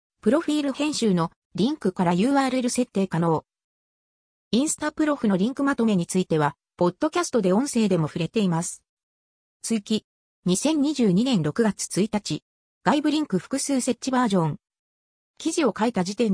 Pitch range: 180-265 Hz